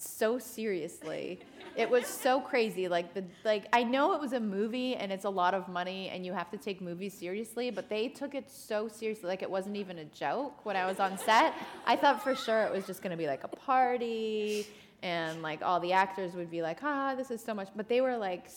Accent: American